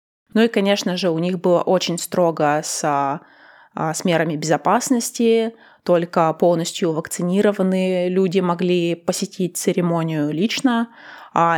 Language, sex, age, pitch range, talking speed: Russian, female, 20-39, 165-205 Hz, 115 wpm